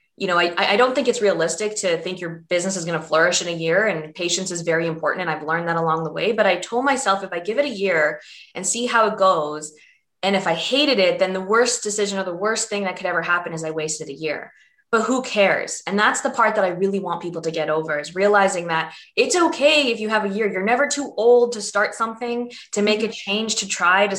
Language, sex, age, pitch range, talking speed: English, female, 20-39, 165-220 Hz, 265 wpm